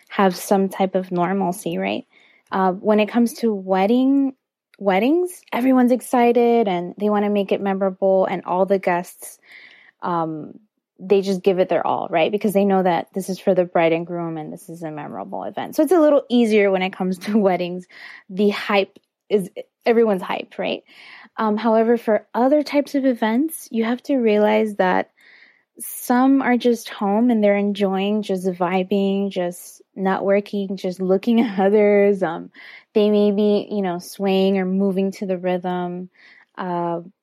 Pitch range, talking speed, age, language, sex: 185-220 Hz, 175 wpm, 20-39, English, female